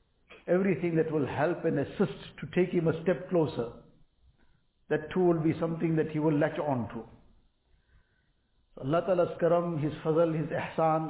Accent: Indian